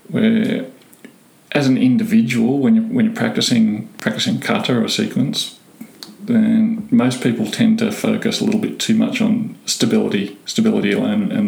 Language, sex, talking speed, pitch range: English, male, 150 wpm, 220-235 Hz